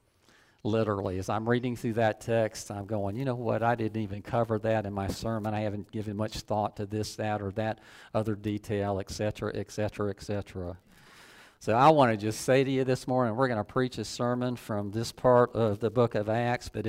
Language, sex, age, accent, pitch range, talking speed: English, male, 50-69, American, 105-120 Hz, 215 wpm